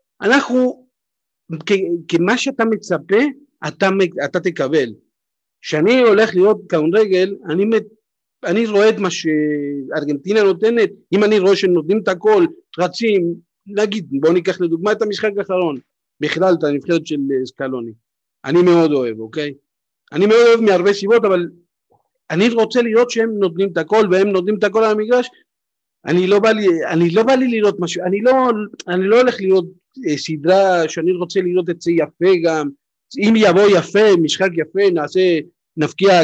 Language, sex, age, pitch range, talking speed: Hebrew, male, 50-69, 165-215 Hz, 150 wpm